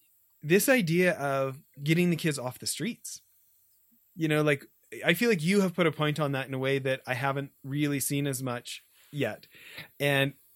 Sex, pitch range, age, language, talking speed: male, 135-175 Hz, 30-49, English, 195 wpm